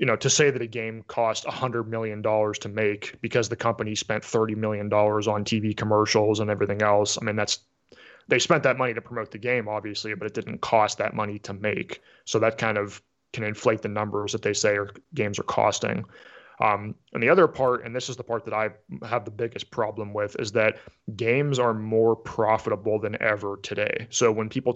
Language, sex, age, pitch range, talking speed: English, male, 20-39, 105-120 Hz, 215 wpm